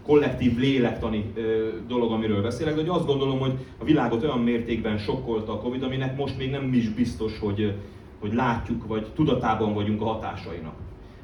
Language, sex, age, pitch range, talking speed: Hungarian, male, 30-49, 105-130 Hz, 165 wpm